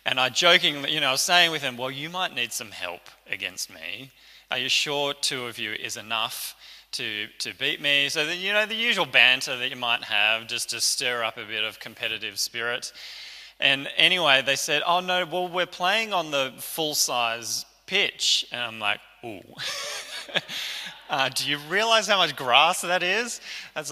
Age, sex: 20-39, male